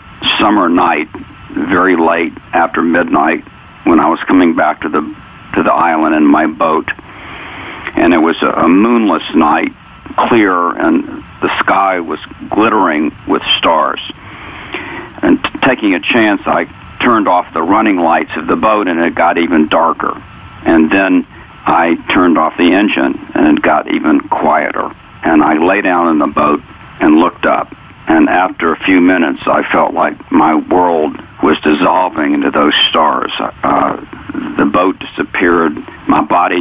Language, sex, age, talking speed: English, male, 60-79, 155 wpm